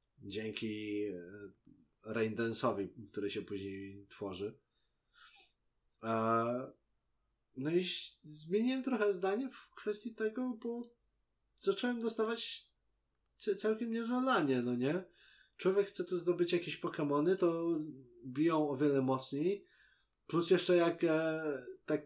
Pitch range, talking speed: 125-180 Hz, 100 wpm